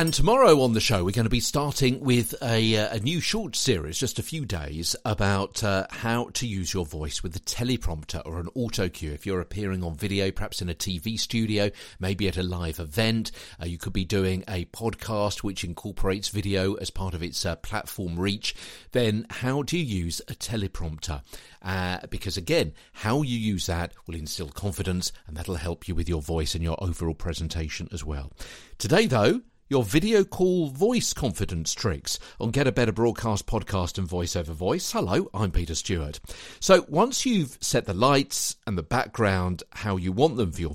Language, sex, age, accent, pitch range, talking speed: English, male, 50-69, British, 85-120 Hz, 195 wpm